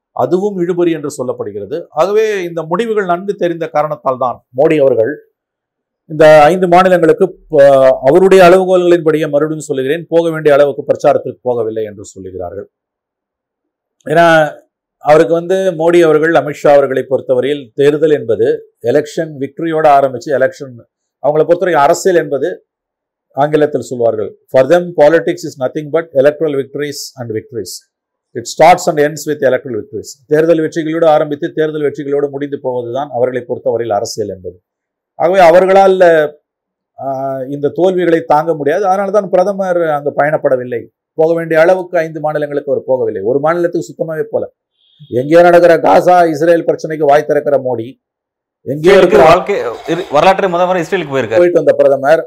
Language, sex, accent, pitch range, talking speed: Tamil, male, native, 145-185 Hz, 120 wpm